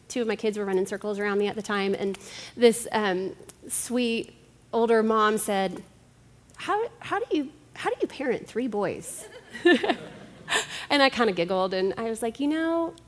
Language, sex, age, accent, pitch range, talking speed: English, female, 30-49, American, 205-275 Hz, 185 wpm